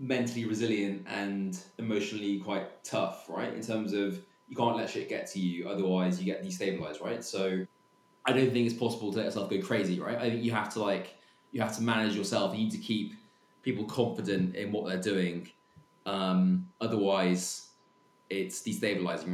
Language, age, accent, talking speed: English, 20-39, British, 185 wpm